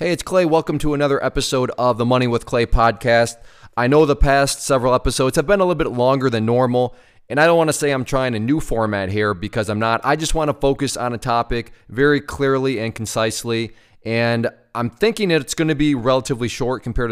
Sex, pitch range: male, 115-140 Hz